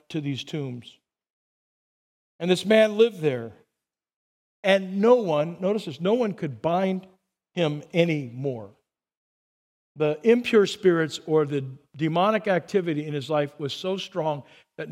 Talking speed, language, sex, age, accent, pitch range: 135 wpm, English, male, 50-69, American, 135-185 Hz